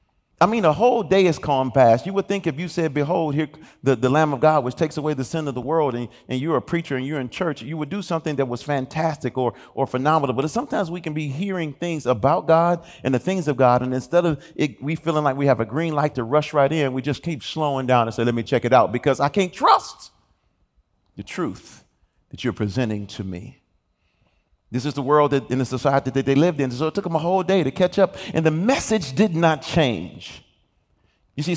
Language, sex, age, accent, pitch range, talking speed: English, male, 40-59, American, 120-160 Hz, 250 wpm